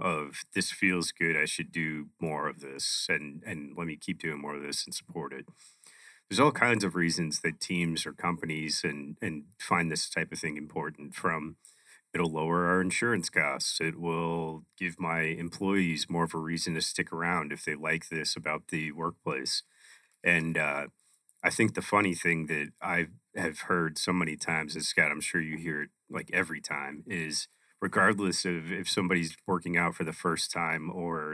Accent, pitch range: American, 80-90 Hz